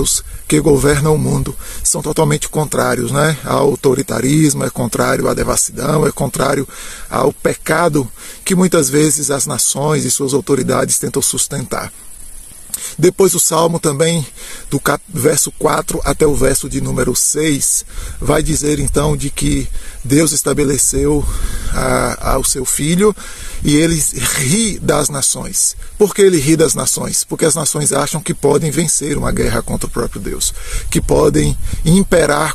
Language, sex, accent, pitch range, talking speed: Portuguese, male, Brazilian, 135-160 Hz, 145 wpm